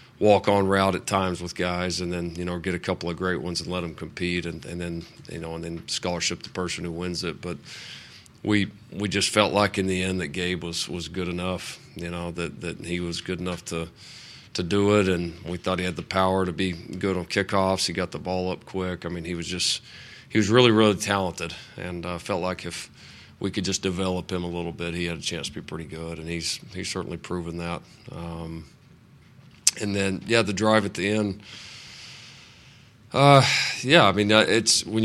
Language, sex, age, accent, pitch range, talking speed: English, male, 40-59, American, 85-100 Hz, 225 wpm